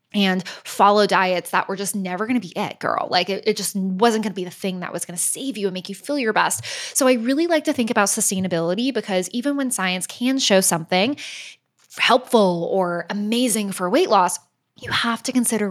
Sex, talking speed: female, 225 wpm